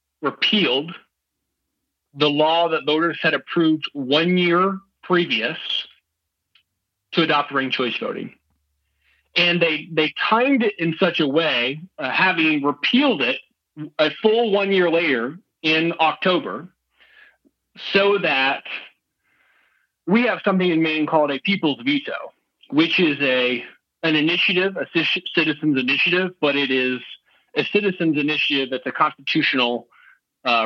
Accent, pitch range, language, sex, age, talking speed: American, 135-180 Hz, English, male, 40-59, 125 wpm